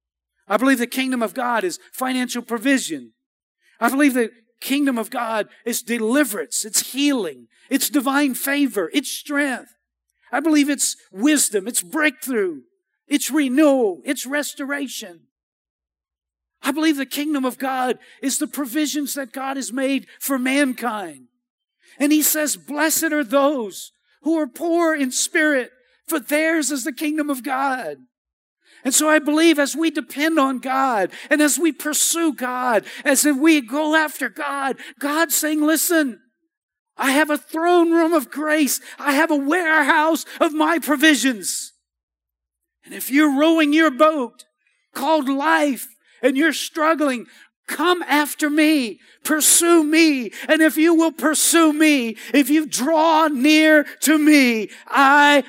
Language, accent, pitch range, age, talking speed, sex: English, American, 255-310 Hz, 50-69, 145 wpm, male